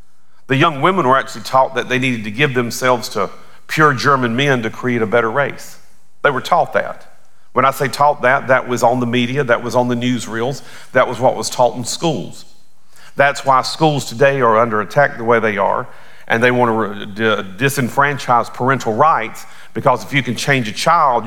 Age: 40-59